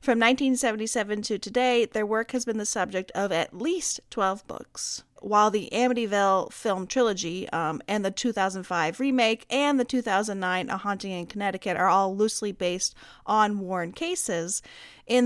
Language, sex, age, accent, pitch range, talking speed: English, female, 30-49, American, 185-245 Hz, 155 wpm